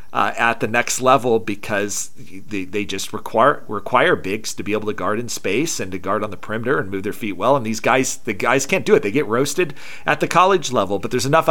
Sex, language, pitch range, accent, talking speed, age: male, English, 105-140 Hz, American, 250 wpm, 40-59